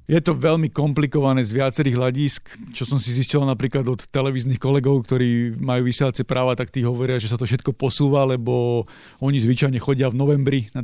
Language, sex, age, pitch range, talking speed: Slovak, male, 40-59, 125-140 Hz, 190 wpm